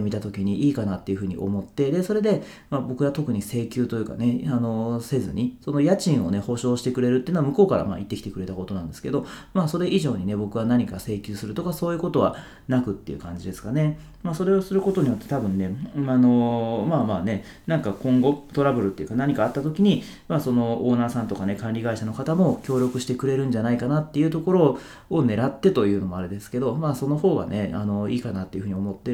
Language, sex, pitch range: Japanese, male, 105-155 Hz